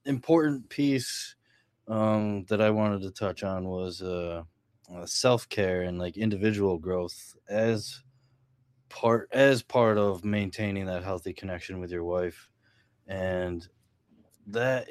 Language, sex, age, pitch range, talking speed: English, male, 20-39, 90-110 Hz, 120 wpm